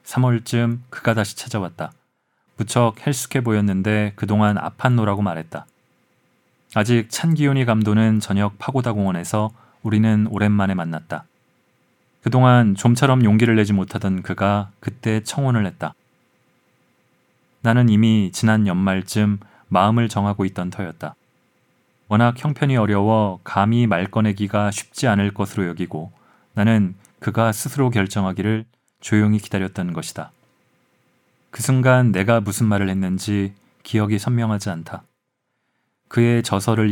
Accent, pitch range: native, 100-120 Hz